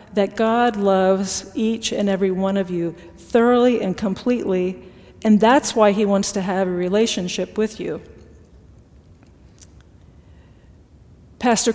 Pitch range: 185-220 Hz